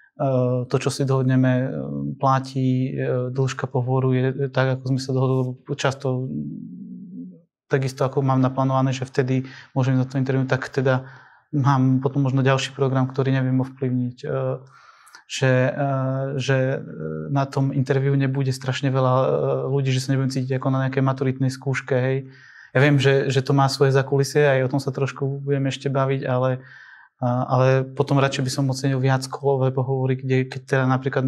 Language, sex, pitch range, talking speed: Slovak, male, 130-135 Hz, 155 wpm